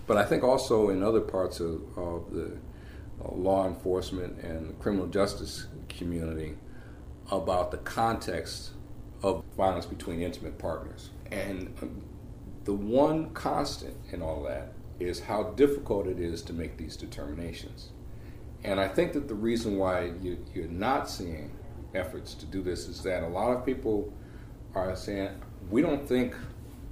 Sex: male